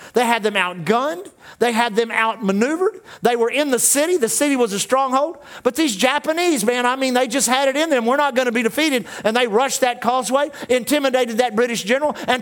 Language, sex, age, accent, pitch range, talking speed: English, male, 50-69, American, 195-245 Hz, 220 wpm